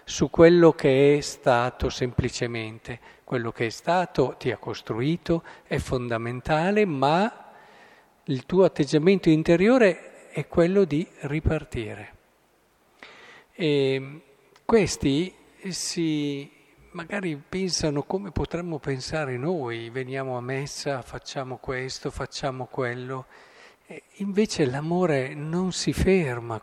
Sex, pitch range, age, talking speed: male, 130-170 Hz, 50-69, 100 wpm